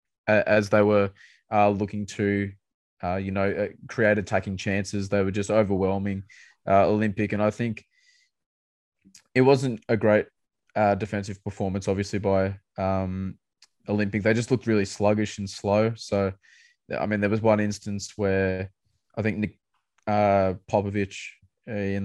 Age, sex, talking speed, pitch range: 20-39, male, 145 wpm, 95-105 Hz